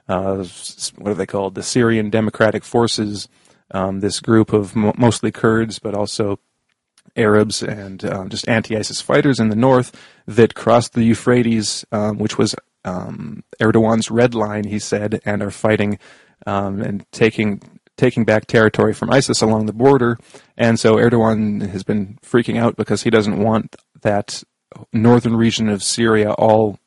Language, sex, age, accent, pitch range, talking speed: English, male, 30-49, American, 105-115 Hz, 160 wpm